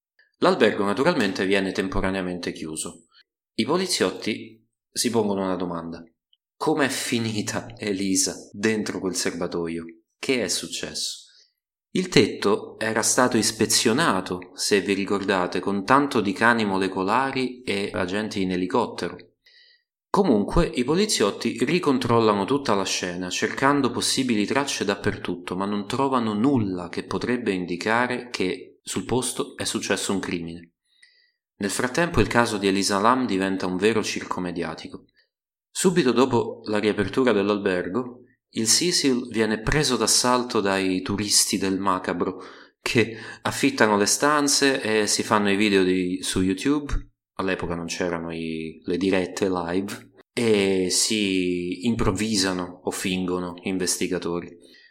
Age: 30-49